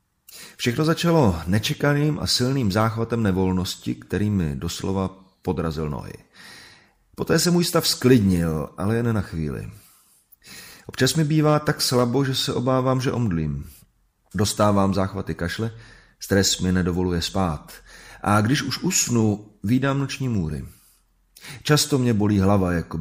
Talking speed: 130 wpm